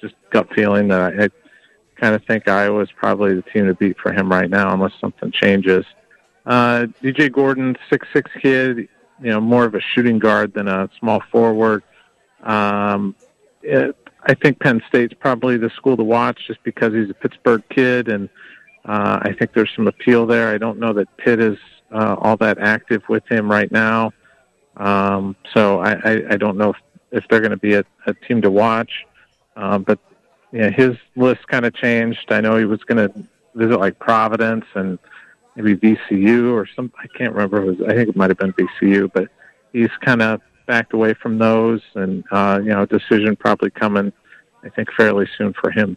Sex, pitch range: male, 100-120 Hz